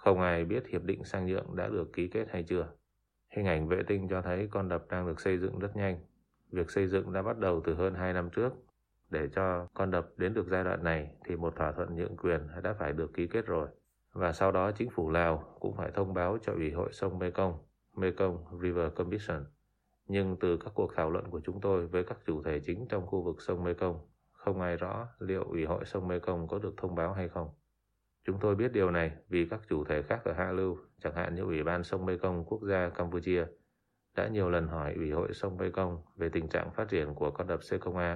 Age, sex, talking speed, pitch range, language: 20-39, male, 240 wpm, 85-95 Hz, Vietnamese